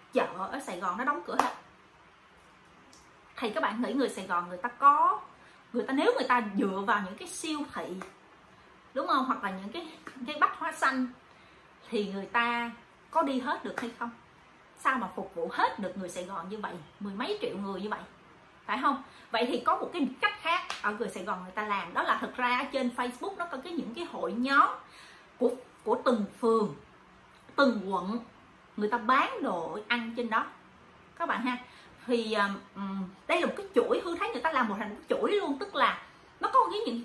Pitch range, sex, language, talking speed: 210-285 Hz, female, Vietnamese, 215 wpm